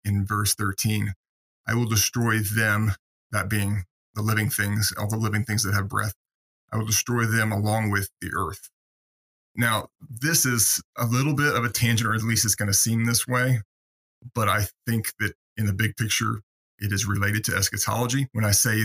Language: English